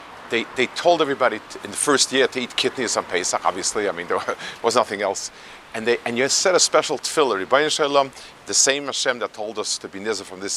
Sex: male